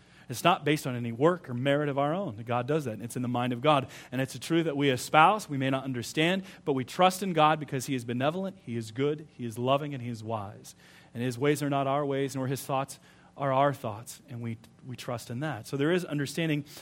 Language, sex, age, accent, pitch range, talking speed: English, male, 40-59, American, 130-160 Hz, 260 wpm